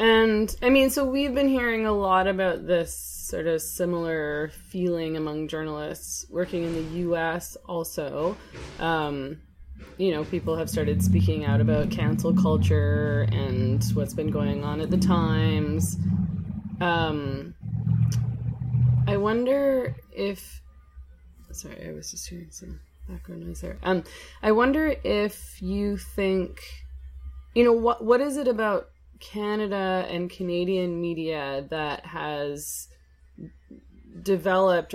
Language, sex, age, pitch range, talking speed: English, female, 20-39, 135-175 Hz, 125 wpm